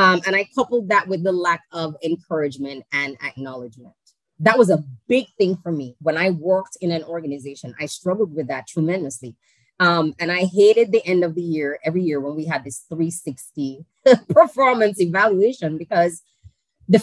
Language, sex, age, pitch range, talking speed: English, female, 20-39, 160-210 Hz, 175 wpm